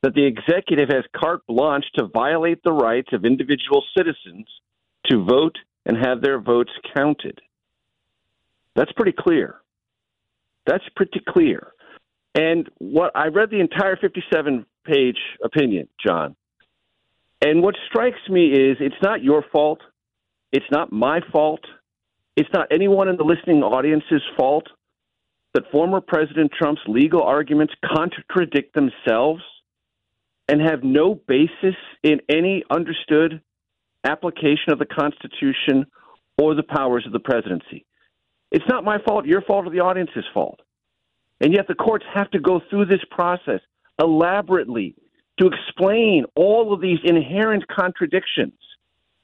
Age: 50-69